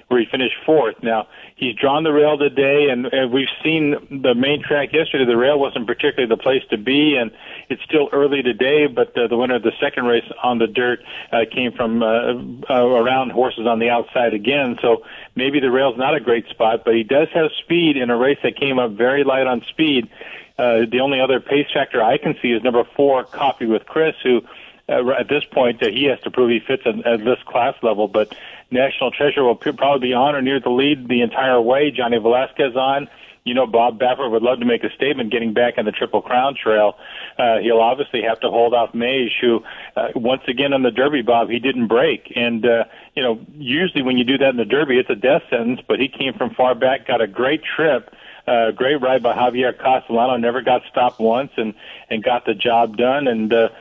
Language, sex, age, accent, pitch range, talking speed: English, male, 50-69, American, 120-135 Hz, 225 wpm